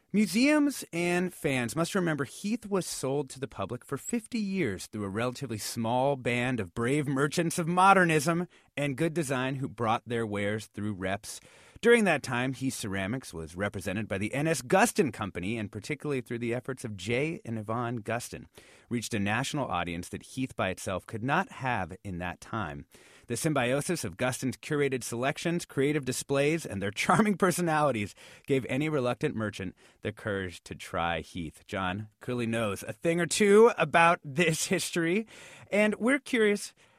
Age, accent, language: 30-49, American, English